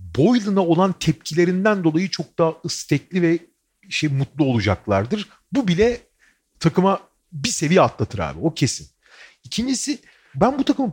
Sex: male